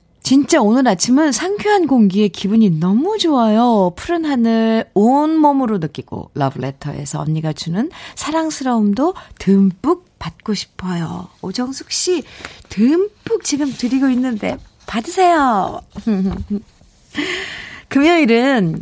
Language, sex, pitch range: Korean, female, 180-270 Hz